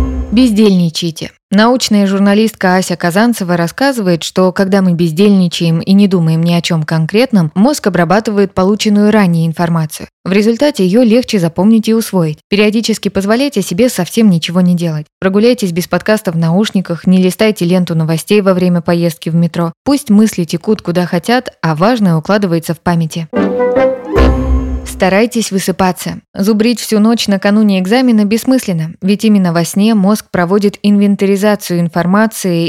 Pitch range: 175-220 Hz